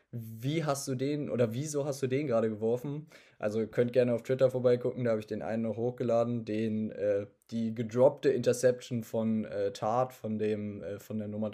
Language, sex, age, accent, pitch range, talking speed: German, male, 20-39, German, 105-120 Hz, 200 wpm